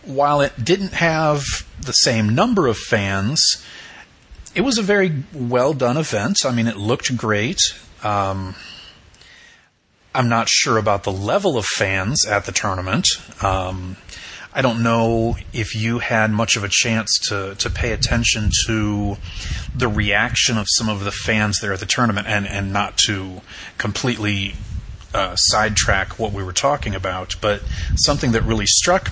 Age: 30-49